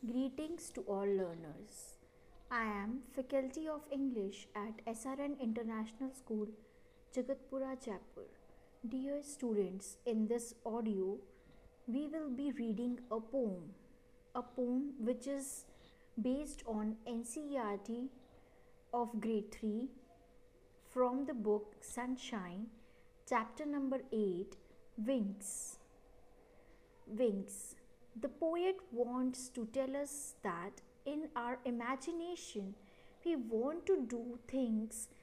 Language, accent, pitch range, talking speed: English, Indian, 225-280 Hz, 100 wpm